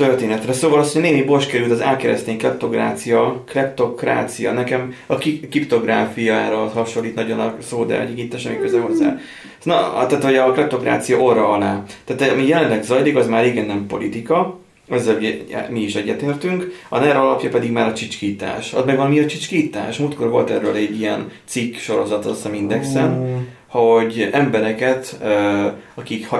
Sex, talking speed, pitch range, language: male, 160 wpm, 105-130 Hz, Hungarian